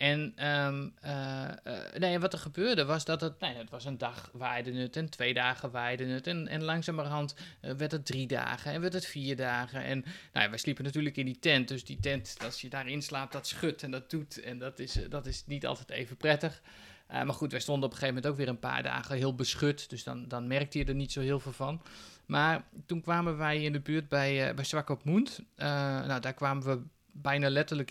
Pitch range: 130-160 Hz